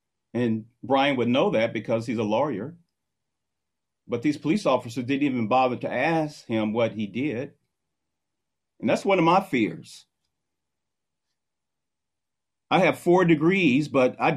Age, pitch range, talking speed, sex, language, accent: 40-59, 105-150 Hz, 140 wpm, male, English, American